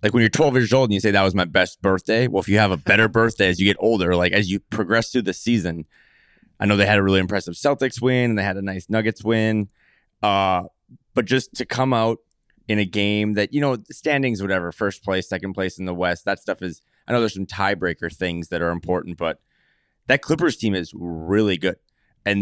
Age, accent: 20-39, American